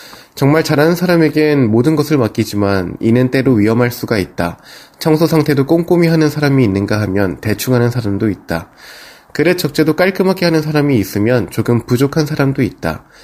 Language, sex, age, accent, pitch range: Korean, male, 20-39, native, 105-150 Hz